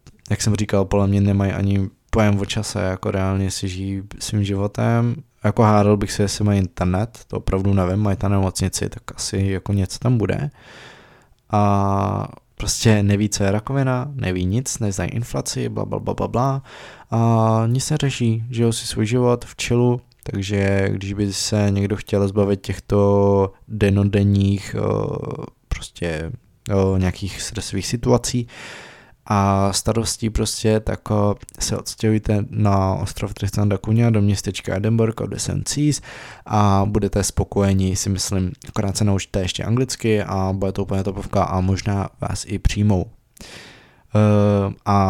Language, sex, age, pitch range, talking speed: Czech, male, 20-39, 100-115 Hz, 145 wpm